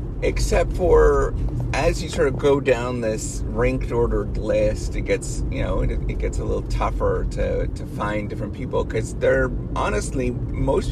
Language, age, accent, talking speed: English, 30-49, American, 165 wpm